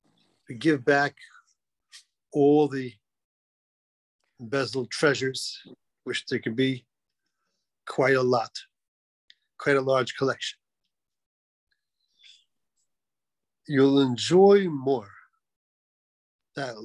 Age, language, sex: 50-69, English, male